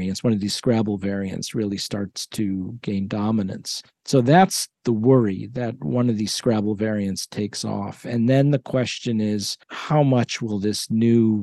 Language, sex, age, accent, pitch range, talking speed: English, male, 50-69, American, 105-130 Hz, 170 wpm